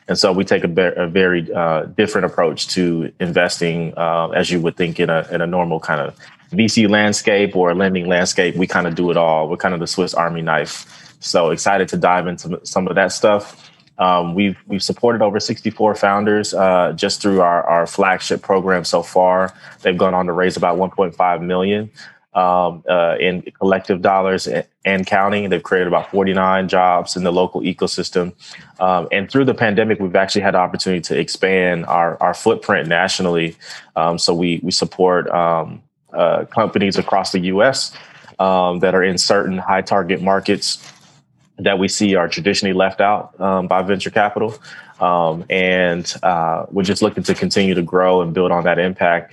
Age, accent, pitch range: 20-39, American, 85-95 Hz